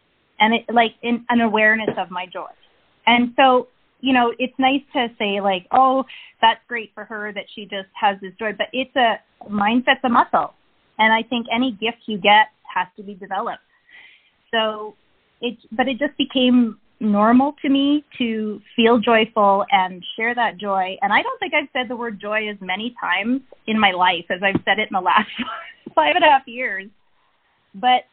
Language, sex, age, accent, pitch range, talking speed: English, female, 30-49, American, 205-255 Hz, 190 wpm